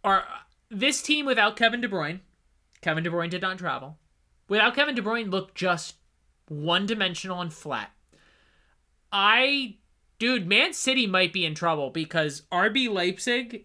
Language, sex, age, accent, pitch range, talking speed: English, male, 30-49, American, 165-215 Hz, 150 wpm